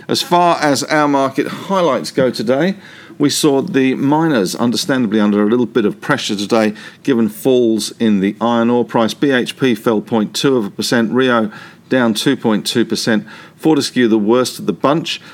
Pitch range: 110-145 Hz